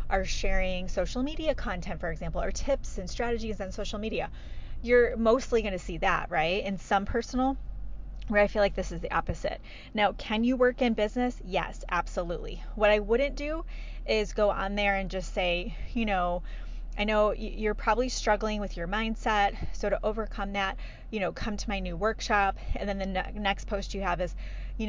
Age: 20-39